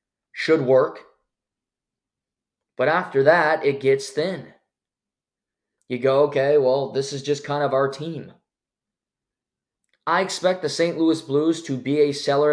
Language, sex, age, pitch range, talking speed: English, male, 20-39, 135-160 Hz, 140 wpm